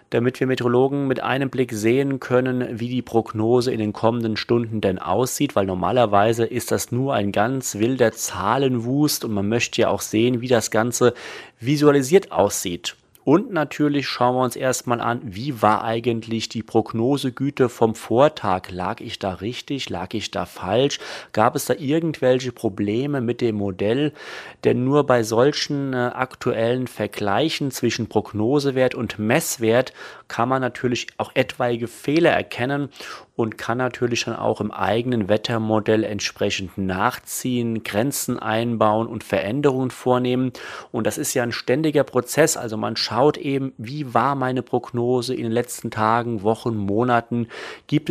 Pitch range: 110-135 Hz